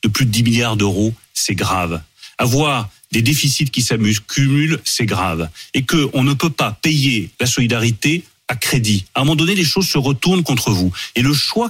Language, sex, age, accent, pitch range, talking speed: French, male, 40-59, French, 115-155 Hz, 200 wpm